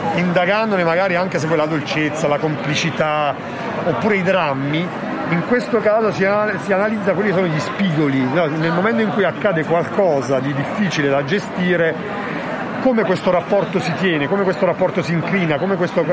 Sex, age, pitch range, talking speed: male, 40-59, 150-190 Hz, 155 wpm